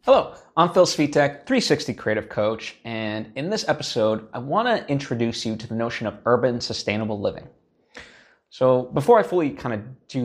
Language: English